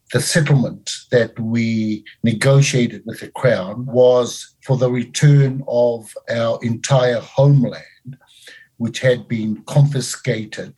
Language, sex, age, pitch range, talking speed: English, male, 50-69, 115-135 Hz, 110 wpm